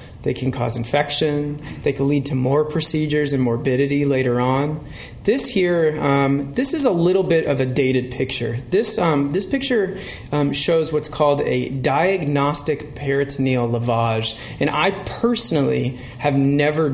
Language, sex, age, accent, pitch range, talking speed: English, male, 30-49, American, 125-165 Hz, 150 wpm